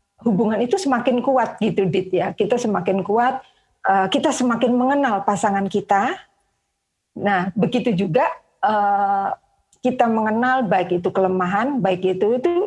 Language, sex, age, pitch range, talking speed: Indonesian, female, 40-59, 195-245 Hz, 135 wpm